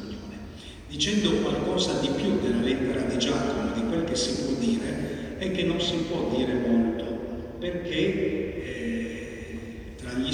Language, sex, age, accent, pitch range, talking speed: Italian, male, 50-69, native, 120-170 Hz, 145 wpm